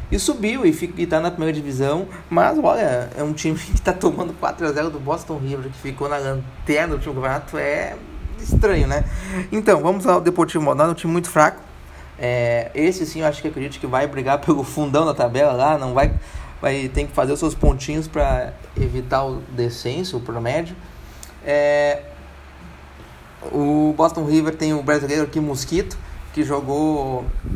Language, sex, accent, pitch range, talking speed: Portuguese, male, Brazilian, 130-170 Hz, 170 wpm